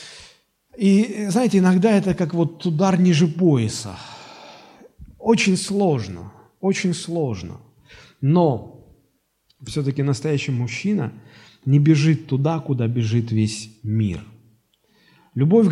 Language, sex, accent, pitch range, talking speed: Russian, male, native, 120-170 Hz, 95 wpm